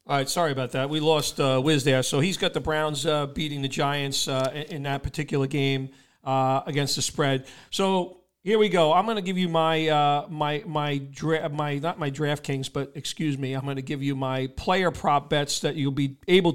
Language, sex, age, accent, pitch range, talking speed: English, male, 40-59, American, 145-165 Hz, 230 wpm